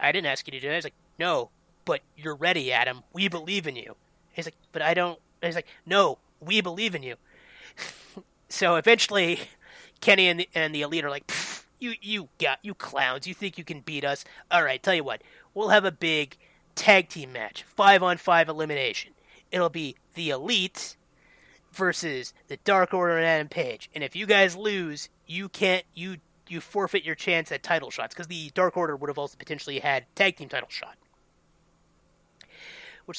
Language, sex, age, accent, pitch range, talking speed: English, male, 30-49, American, 155-195 Hz, 195 wpm